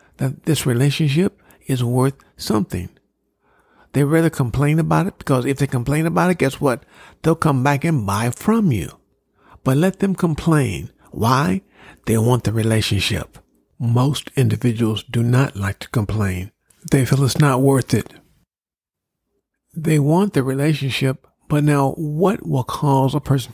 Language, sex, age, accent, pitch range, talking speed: English, male, 50-69, American, 115-155 Hz, 150 wpm